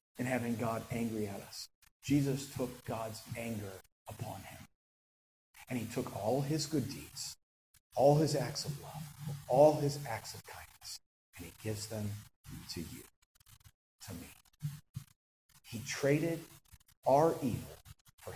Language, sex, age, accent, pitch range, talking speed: English, male, 40-59, American, 130-215 Hz, 135 wpm